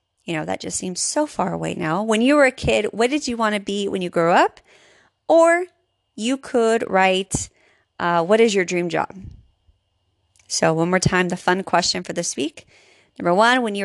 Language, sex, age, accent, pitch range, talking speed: English, female, 30-49, American, 165-225 Hz, 210 wpm